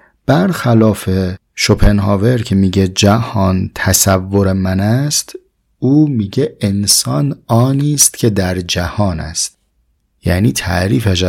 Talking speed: 100 wpm